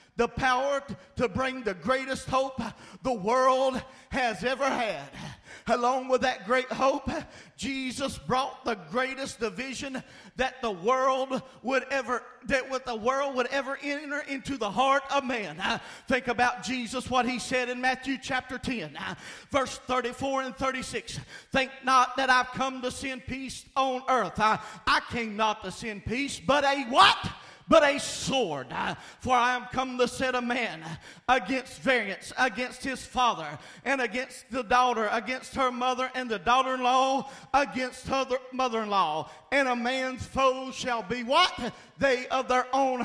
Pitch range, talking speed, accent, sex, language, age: 245-275 Hz, 160 wpm, American, male, English, 40-59